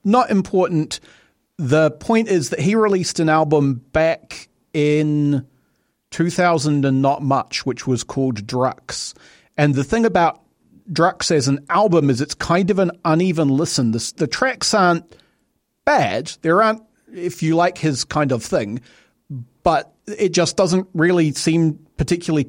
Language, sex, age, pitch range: English, male, 40-59, 135-170 Hz